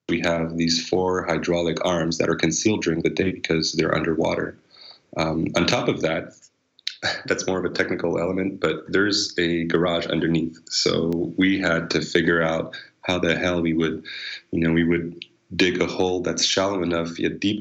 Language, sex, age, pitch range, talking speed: English, male, 30-49, 80-90 Hz, 185 wpm